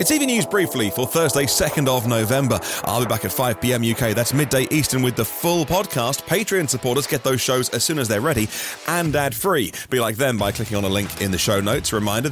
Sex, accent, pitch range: male, British, 110-150 Hz